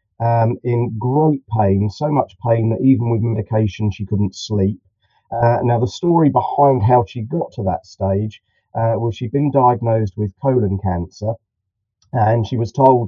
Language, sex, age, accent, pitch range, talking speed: English, male, 40-59, British, 100-120 Hz, 170 wpm